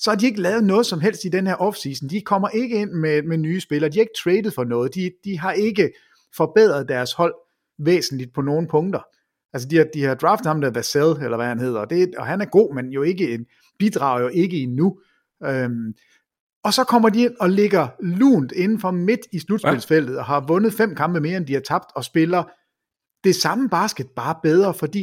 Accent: Danish